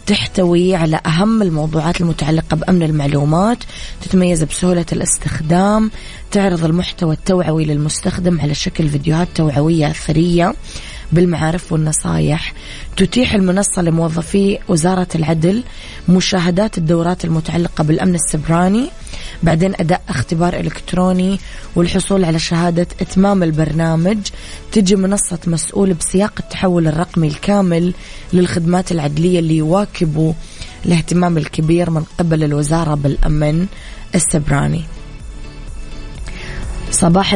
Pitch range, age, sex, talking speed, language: 160-185 Hz, 20-39, female, 95 wpm, English